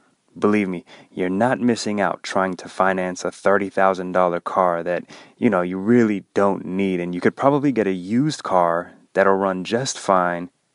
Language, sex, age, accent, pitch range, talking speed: English, male, 20-39, American, 95-115 Hz, 175 wpm